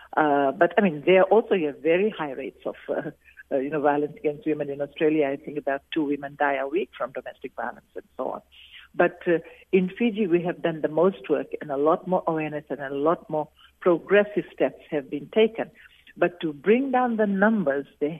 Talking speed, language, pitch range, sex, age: 215 wpm, English, 145-180 Hz, female, 60-79